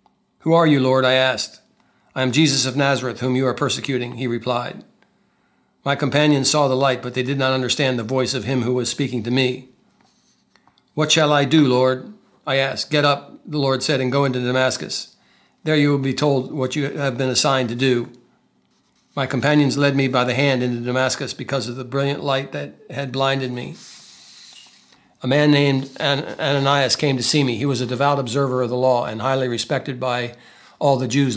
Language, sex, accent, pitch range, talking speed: English, male, American, 125-145 Hz, 200 wpm